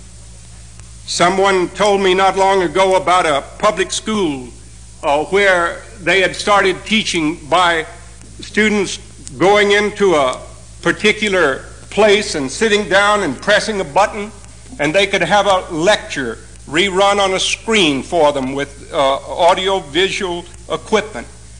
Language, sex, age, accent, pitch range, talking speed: English, male, 60-79, American, 160-205 Hz, 130 wpm